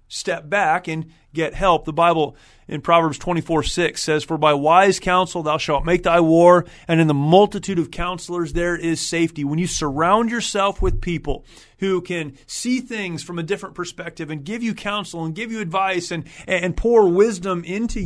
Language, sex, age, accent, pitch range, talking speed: English, male, 30-49, American, 145-180 Hz, 190 wpm